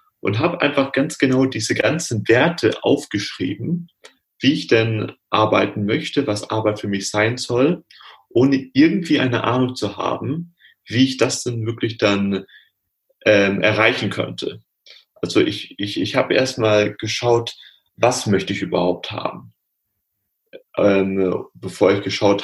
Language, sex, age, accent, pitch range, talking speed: German, male, 30-49, German, 100-130 Hz, 140 wpm